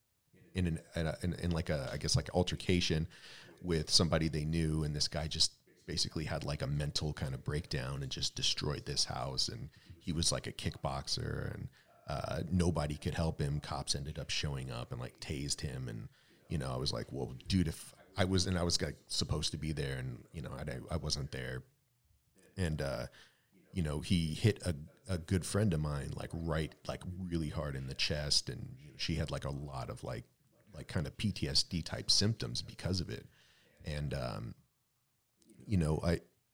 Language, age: English, 40-59